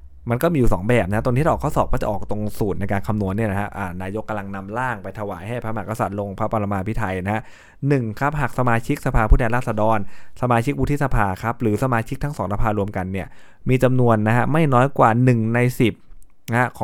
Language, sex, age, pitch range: Thai, male, 20-39, 100-120 Hz